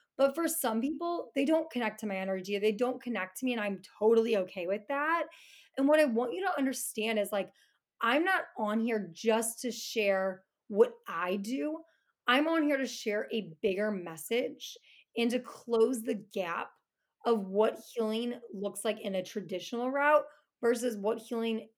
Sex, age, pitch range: female, 20-39, 200-245 Hz